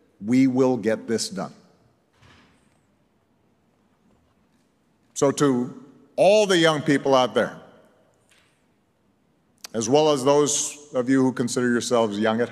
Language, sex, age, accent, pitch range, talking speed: English, male, 50-69, American, 130-185 Hz, 115 wpm